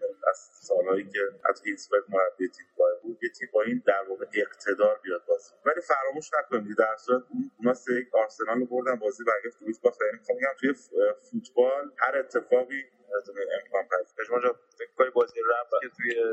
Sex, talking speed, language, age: male, 155 wpm, Persian, 30-49